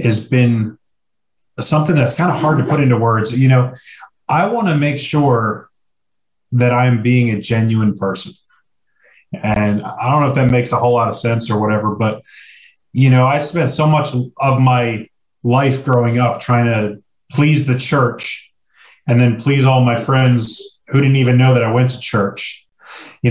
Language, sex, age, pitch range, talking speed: English, male, 30-49, 115-135 Hz, 185 wpm